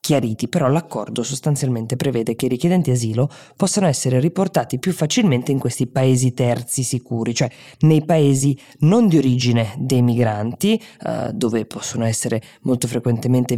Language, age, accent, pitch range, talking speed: Italian, 20-39, native, 120-140 Hz, 145 wpm